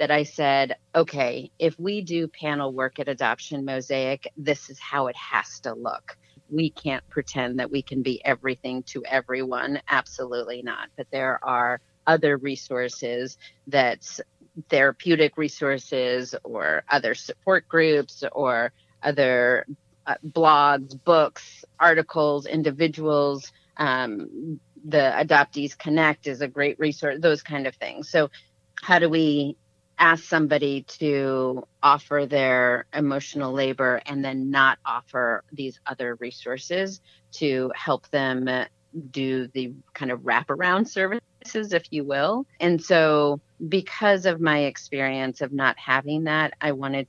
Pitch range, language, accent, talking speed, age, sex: 130-155 Hz, English, American, 135 wpm, 40-59, female